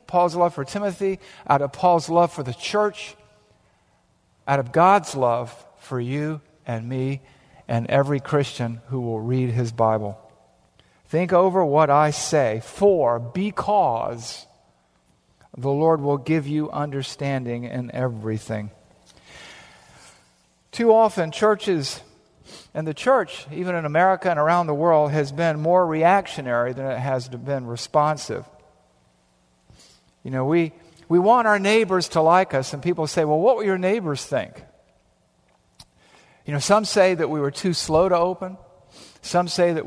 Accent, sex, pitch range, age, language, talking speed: American, male, 130-180 Hz, 50-69, English, 145 wpm